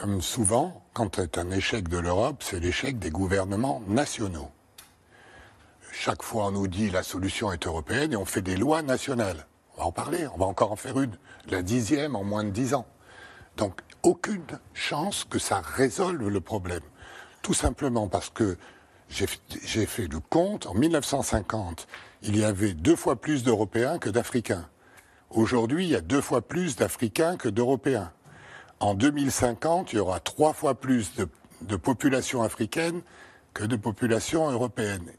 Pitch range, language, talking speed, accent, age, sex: 100-135 Hz, French, 170 wpm, French, 60-79, male